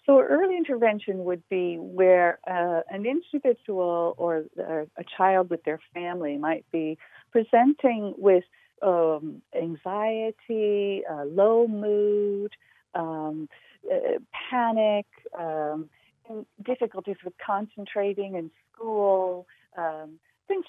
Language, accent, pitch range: English, American, 175-225 Hz